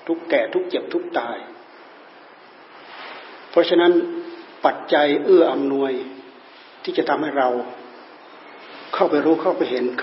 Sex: male